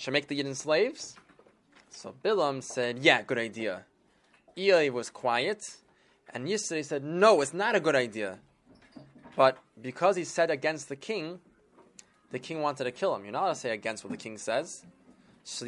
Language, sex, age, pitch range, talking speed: English, male, 20-39, 130-180 Hz, 180 wpm